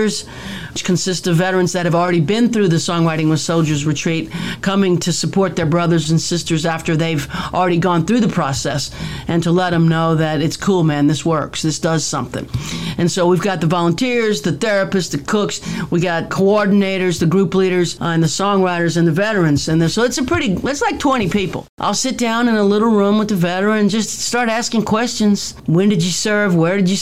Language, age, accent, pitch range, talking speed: English, 50-69, American, 170-205 Hz, 210 wpm